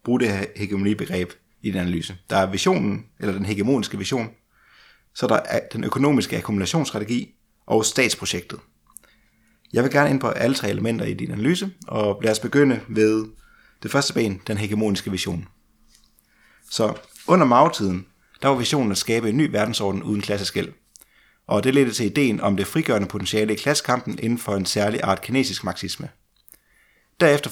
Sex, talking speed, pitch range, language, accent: male, 165 wpm, 100-130 Hz, Danish, native